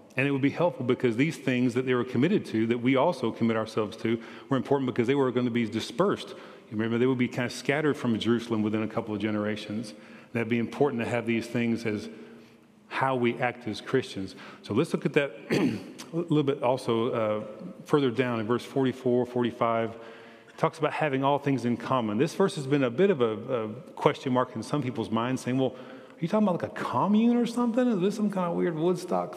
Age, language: 40-59, English